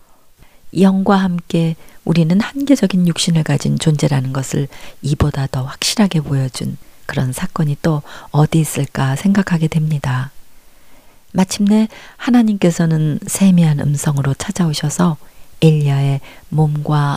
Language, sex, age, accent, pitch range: Korean, female, 40-59, native, 140-175 Hz